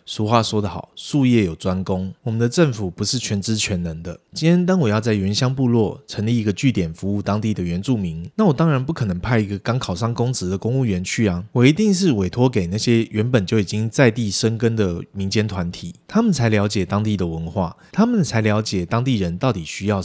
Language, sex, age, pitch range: Chinese, male, 20-39, 95-130 Hz